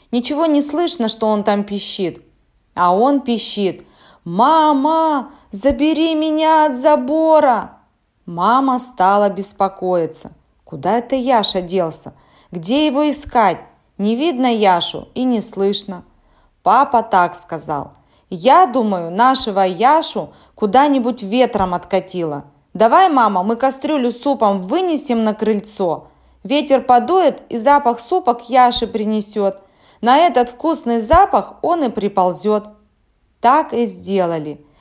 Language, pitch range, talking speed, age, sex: Russian, 190-260 Hz, 115 wpm, 20-39, female